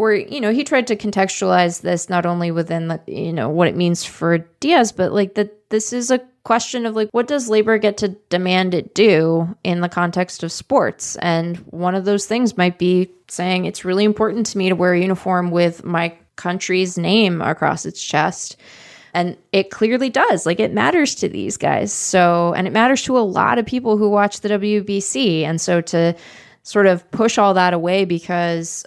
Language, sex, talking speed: English, female, 205 wpm